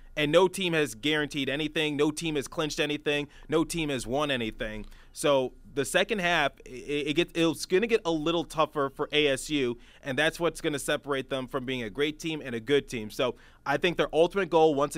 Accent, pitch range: American, 125-150 Hz